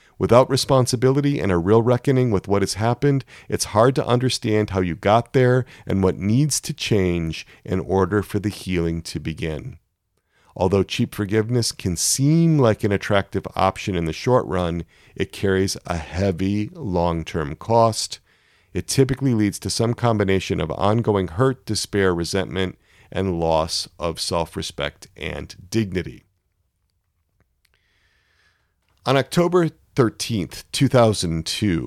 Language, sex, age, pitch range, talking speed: English, male, 40-59, 90-115 Hz, 130 wpm